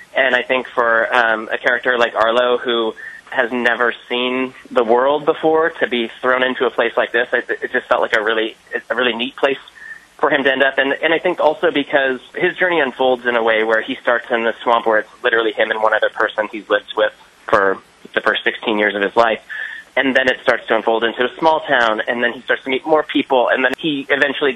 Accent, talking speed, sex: American, 240 wpm, male